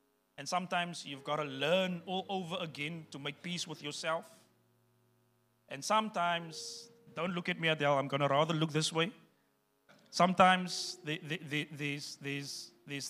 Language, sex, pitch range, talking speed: English, male, 120-185 Hz, 135 wpm